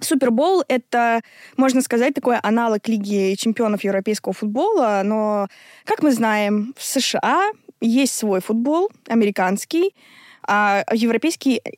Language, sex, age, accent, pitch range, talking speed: Russian, female, 20-39, native, 205-260 Hz, 115 wpm